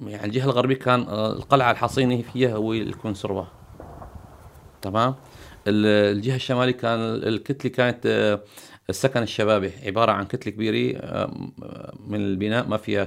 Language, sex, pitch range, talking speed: Arabic, male, 105-125 Hz, 115 wpm